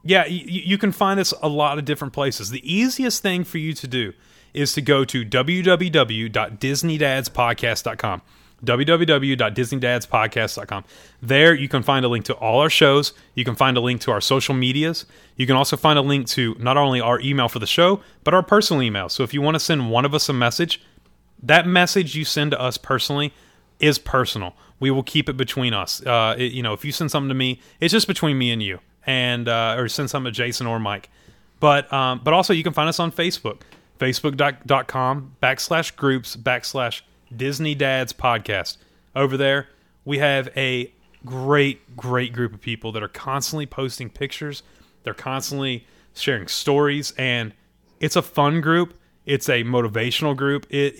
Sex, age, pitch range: male, 30-49, 125-150 Hz